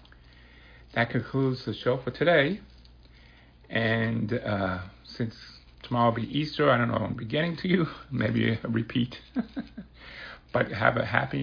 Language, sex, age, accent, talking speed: English, male, 60-79, American, 145 wpm